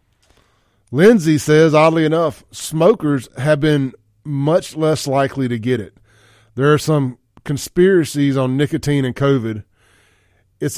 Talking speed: 120 wpm